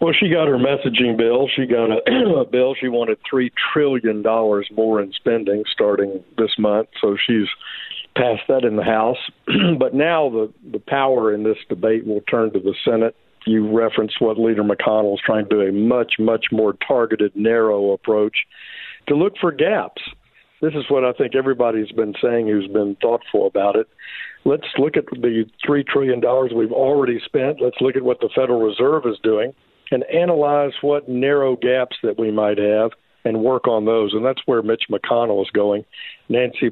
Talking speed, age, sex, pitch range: 185 wpm, 50-69, male, 110-135 Hz